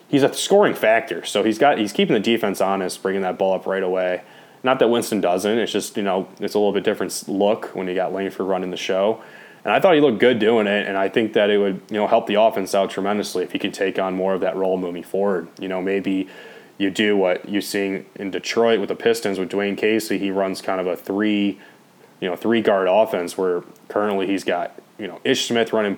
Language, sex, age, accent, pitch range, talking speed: English, male, 20-39, American, 95-105 Hz, 245 wpm